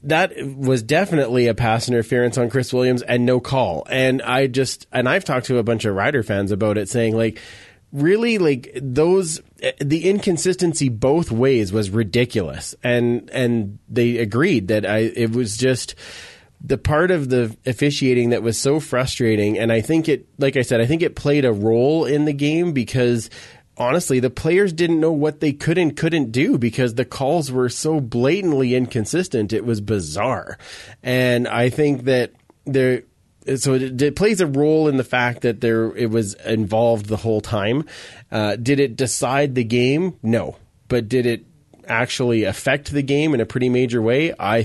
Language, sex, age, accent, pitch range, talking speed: English, male, 30-49, American, 115-140 Hz, 180 wpm